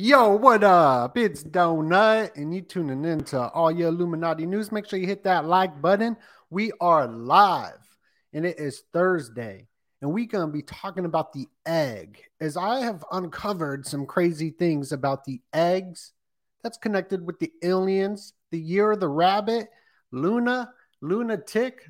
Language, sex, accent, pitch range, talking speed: English, male, American, 145-200 Hz, 160 wpm